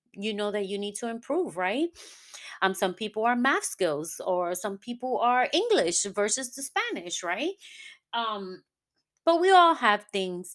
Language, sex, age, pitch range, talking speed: English, female, 30-49, 175-275 Hz, 165 wpm